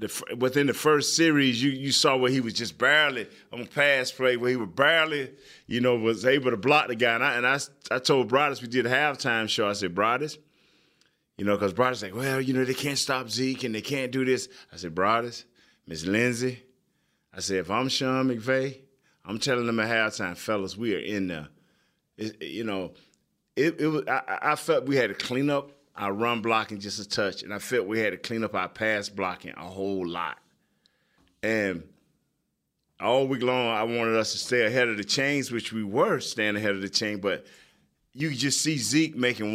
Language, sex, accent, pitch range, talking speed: English, male, American, 105-130 Hz, 215 wpm